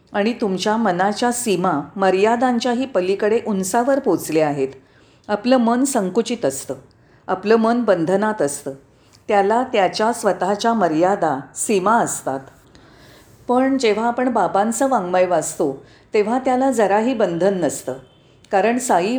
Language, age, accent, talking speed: Marathi, 40-59, native, 115 wpm